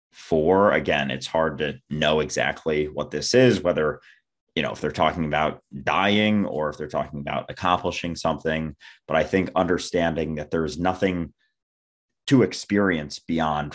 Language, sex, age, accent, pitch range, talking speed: English, male, 30-49, American, 75-95 Hz, 155 wpm